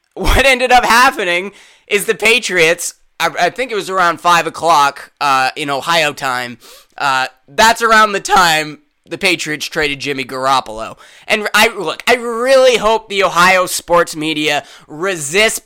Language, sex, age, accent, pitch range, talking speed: English, male, 20-39, American, 150-195 Hz, 145 wpm